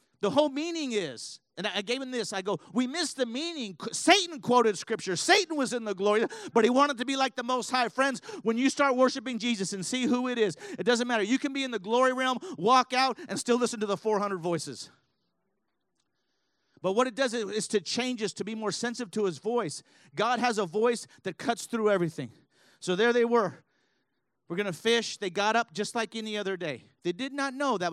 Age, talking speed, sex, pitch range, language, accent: 40-59, 230 wpm, male, 150-230 Hz, English, American